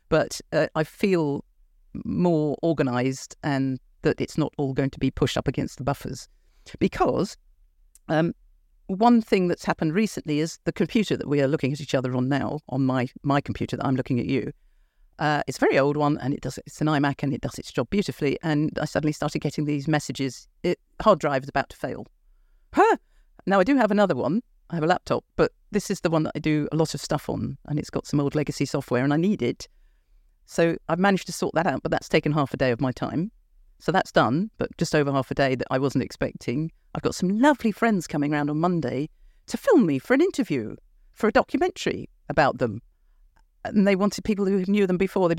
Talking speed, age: 225 wpm, 50-69